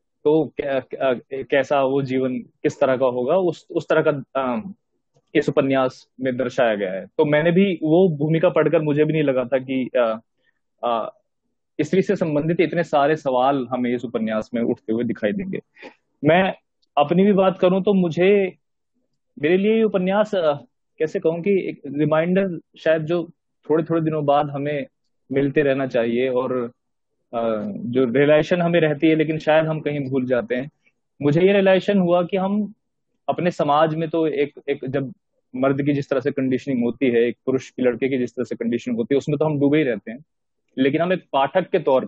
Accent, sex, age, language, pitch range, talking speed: native, male, 20-39, Hindi, 130-165 Hz, 175 wpm